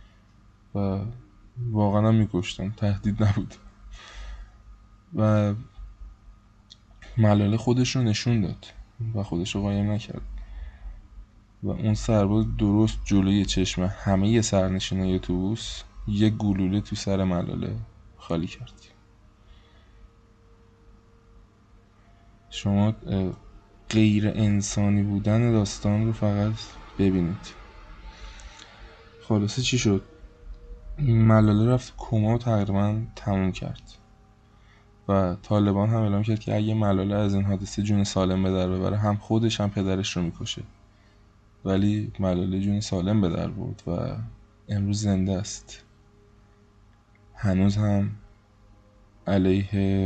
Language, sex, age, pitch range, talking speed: Persian, male, 20-39, 95-110 Hz, 100 wpm